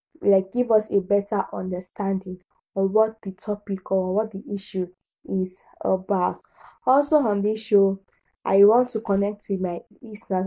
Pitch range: 195-220 Hz